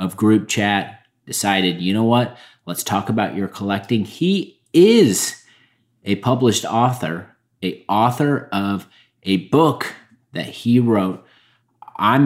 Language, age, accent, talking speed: English, 30-49, American, 125 wpm